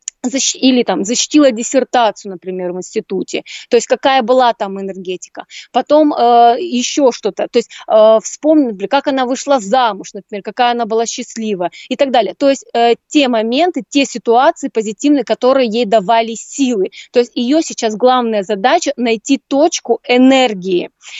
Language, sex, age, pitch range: Russian, female, 20-39, 225-275 Hz